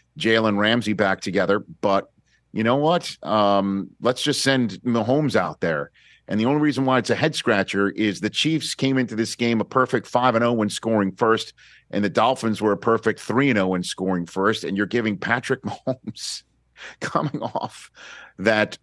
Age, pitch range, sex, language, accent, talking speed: 50-69, 95-120 Hz, male, English, American, 170 wpm